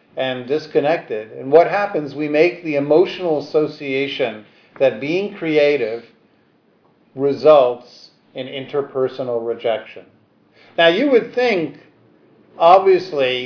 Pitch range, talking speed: 130-160 Hz, 100 wpm